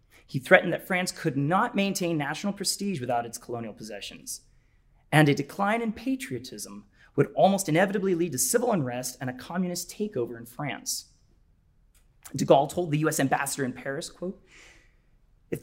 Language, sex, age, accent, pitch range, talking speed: English, male, 30-49, American, 130-180 Hz, 155 wpm